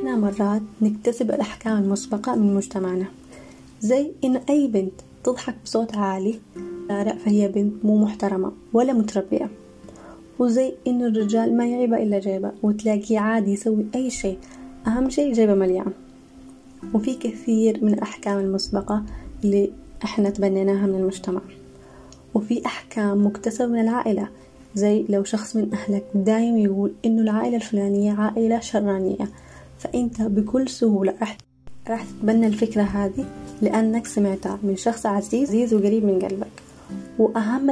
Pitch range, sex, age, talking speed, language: 200-235 Hz, female, 20-39, 125 wpm, Arabic